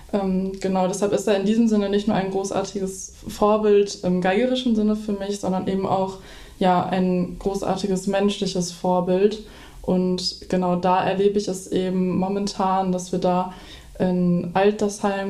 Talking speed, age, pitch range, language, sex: 145 wpm, 20-39, 185-205 Hz, German, female